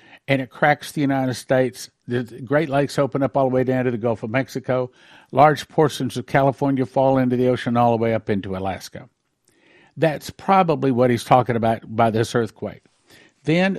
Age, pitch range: 60-79, 125-150 Hz